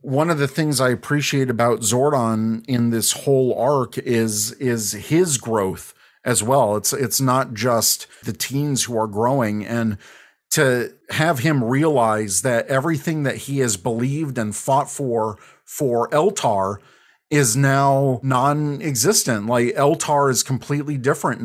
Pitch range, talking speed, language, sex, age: 115-135 Hz, 145 wpm, English, male, 40-59